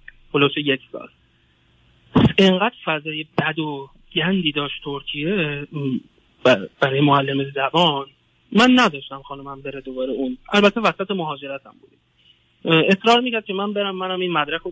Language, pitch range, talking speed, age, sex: Persian, 140-190 Hz, 130 wpm, 30-49, male